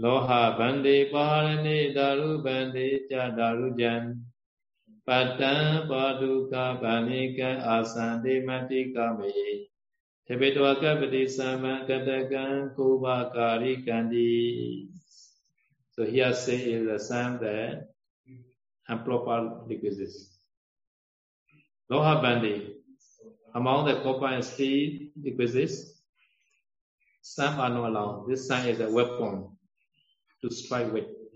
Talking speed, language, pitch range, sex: 90 wpm, Vietnamese, 115-135 Hz, male